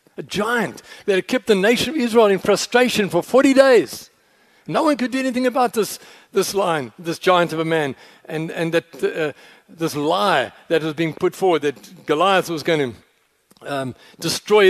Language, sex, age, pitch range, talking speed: English, male, 60-79, 155-200 Hz, 190 wpm